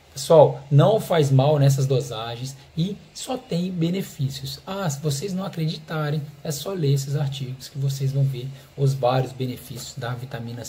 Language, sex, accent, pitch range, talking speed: English, male, Brazilian, 135-165 Hz, 165 wpm